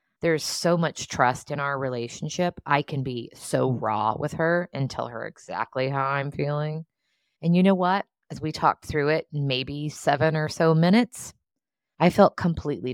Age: 20-39